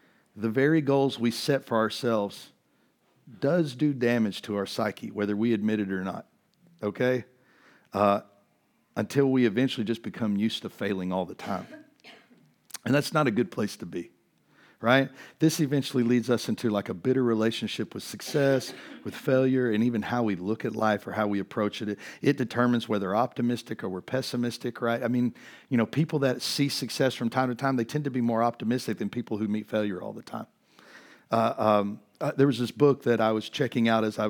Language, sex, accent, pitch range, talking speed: English, male, American, 110-135 Hz, 205 wpm